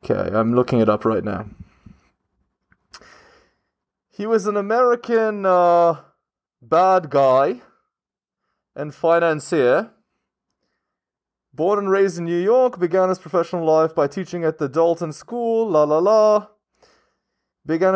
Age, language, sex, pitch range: 20-39, English, male, 135-185 Hz